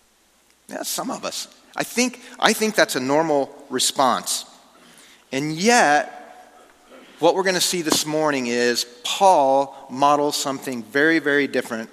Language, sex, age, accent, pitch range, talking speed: English, male, 40-59, American, 120-150 Hz, 140 wpm